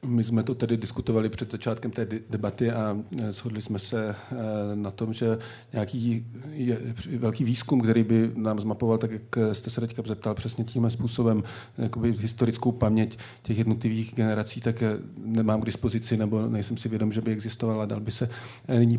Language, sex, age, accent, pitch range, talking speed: Czech, male, 40-59, native, 110-120 Hz, 170 wpm